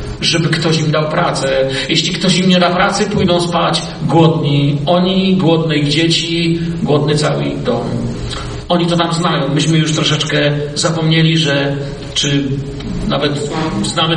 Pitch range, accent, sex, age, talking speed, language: 155-210 Hz, native, male, 40-59, 145 wpm, Polish